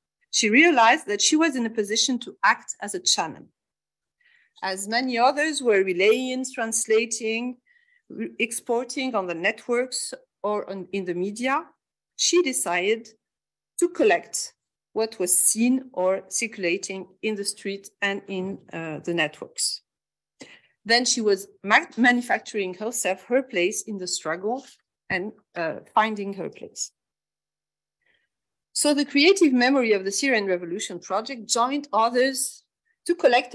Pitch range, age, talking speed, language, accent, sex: 195-260 Hz, 50-69, 130 wpm, English, French, female